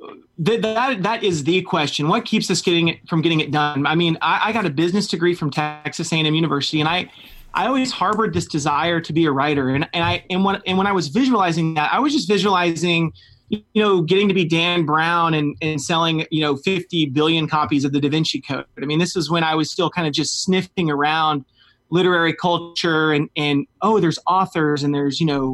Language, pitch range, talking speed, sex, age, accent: English, 150-185 Hz, 230 wpm, male, 30-49, American